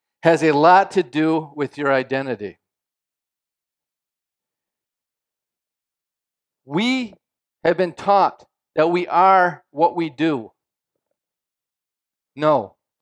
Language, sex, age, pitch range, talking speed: English, male, 50-69, 130-190 Hz, 90 wpm